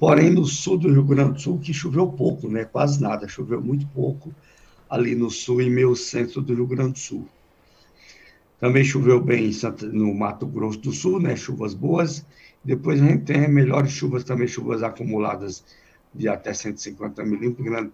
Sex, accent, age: male, Brazilian, 70-89